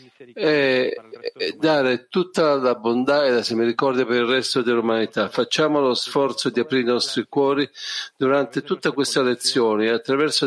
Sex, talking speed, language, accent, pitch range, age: male, 145 wpm, Italian, native, 115-140 Hz, 50-69